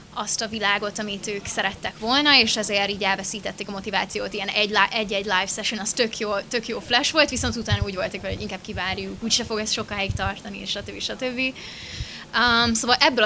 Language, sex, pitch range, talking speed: Hungarian, female, 200-230 Hz, 195 wpm